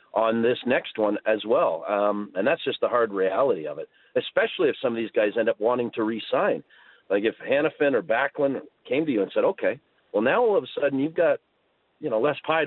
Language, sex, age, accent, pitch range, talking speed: English, male, 40-59, American, 100-135 Hz, 230 wpm